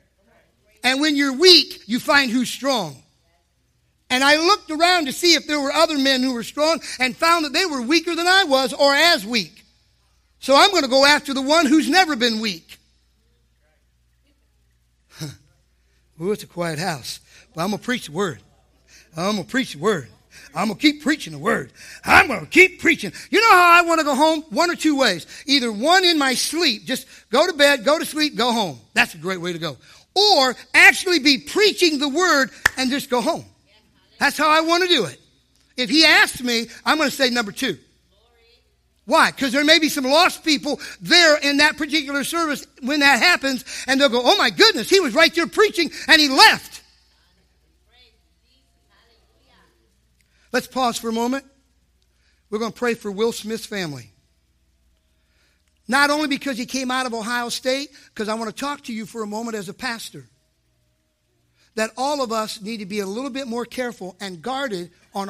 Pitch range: 195-300 Hz